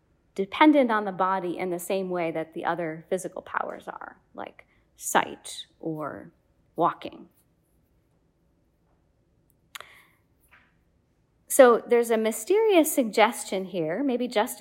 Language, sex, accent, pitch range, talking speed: English, female, American, 180-230 Hz, 105 wpm